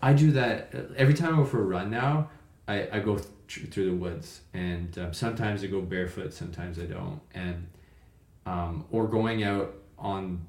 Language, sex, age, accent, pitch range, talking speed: English, male, 20-39, American, 85-105 Hz, 190 wpm